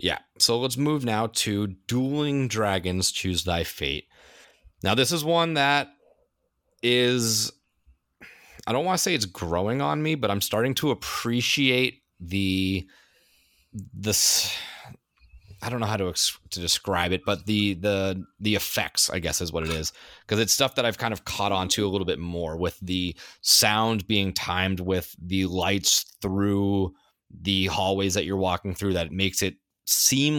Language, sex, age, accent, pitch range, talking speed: English, male, 30-49, American, 95-115 Hz, 170 wpm